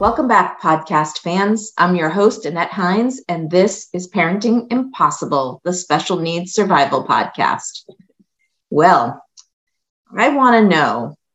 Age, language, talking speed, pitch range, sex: 40-59, English, 125 wpm, 160-205 Hz, female